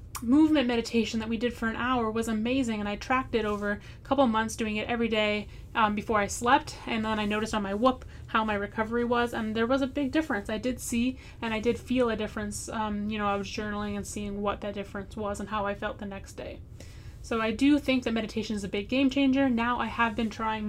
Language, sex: English, female